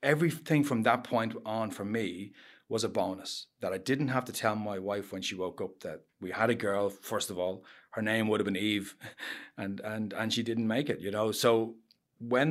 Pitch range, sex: 100-115 Hz, male